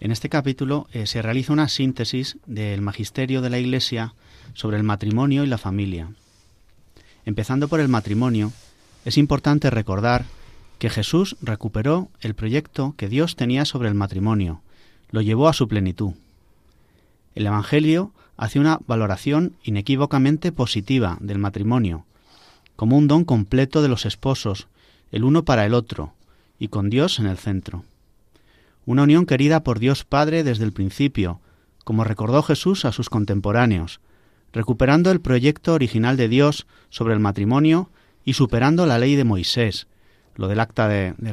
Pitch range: 105-140 Hz